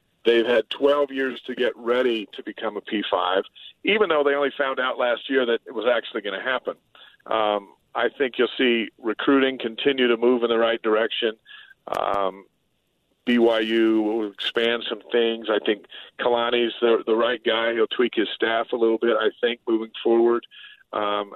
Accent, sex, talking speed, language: American, male, 180 wpm, English